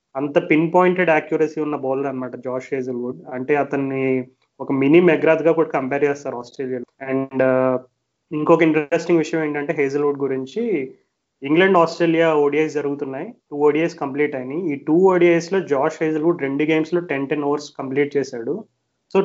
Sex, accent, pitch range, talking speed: male, native, 135-165 Hz, 150 wpm